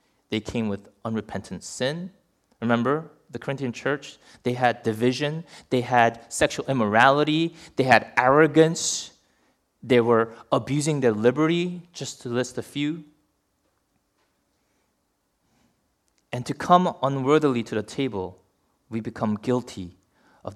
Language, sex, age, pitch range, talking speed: English, male, 30-49, 110-150 Hz, 115 wpm